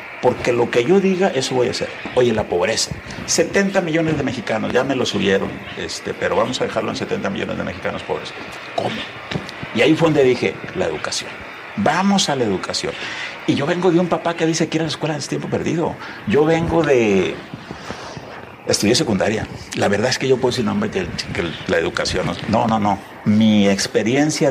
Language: English